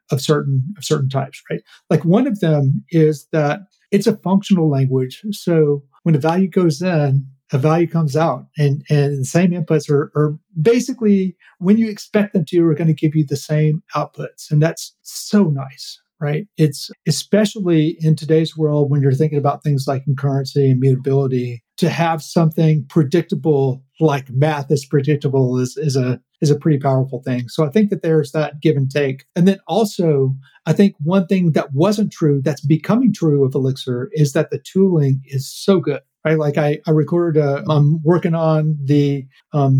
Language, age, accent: English, 40-59, American